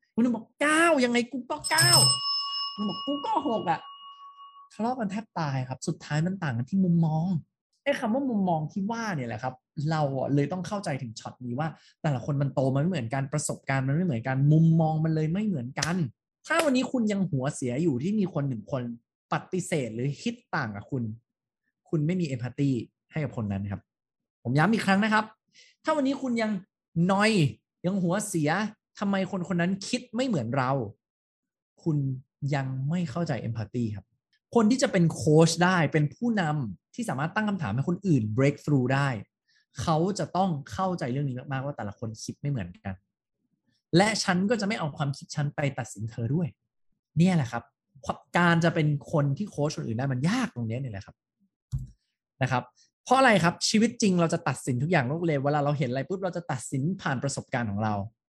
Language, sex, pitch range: English, male, 135-195 Hz